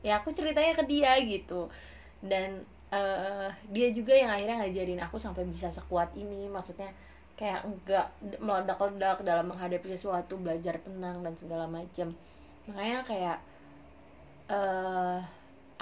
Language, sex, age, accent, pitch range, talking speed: Indonesian, female, 20-39, native, 175-210 Hz, 125 wpm